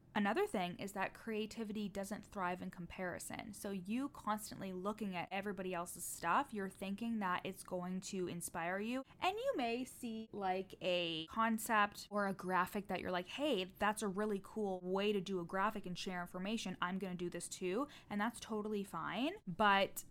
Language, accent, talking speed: English, American, 185 wpm